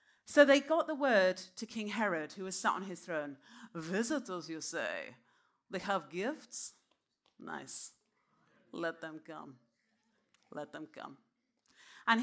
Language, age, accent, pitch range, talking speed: English, 40-59, British, 170-230 Hz, 135 wpm